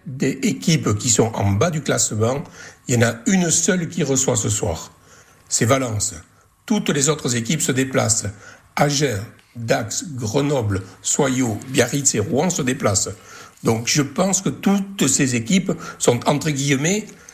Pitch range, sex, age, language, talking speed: 115-145 Hz, male, 60-79, French, 155 wpm